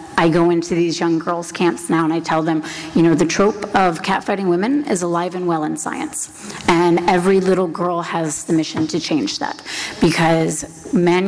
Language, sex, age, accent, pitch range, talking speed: English, female, 30-49, American, 160-185 Hz, 195 wpm